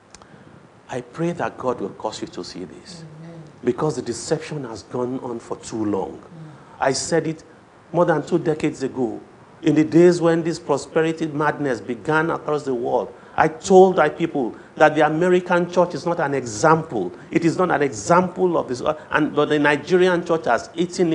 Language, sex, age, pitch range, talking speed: English, male, 50-69, 135-170 Hz, 180 wpm